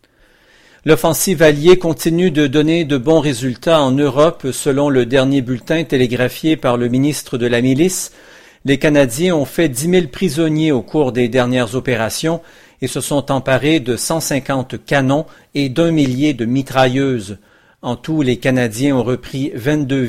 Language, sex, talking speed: French, male, 160 wpm